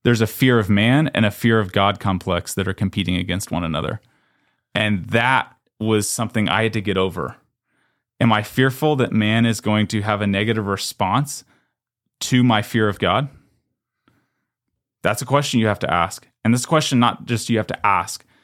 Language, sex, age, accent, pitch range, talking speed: English, male, 20-39, American, 95-120 Hz, 190 wpm